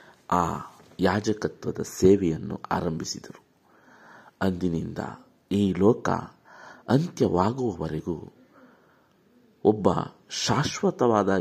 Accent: native